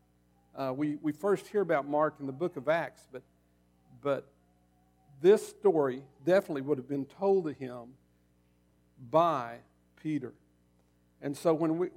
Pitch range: 115-165 Hz